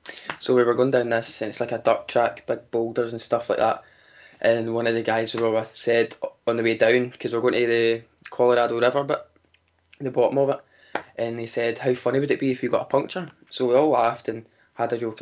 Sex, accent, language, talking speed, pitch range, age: male, British, English, 250 wpm, 115-125 Hz, 20-39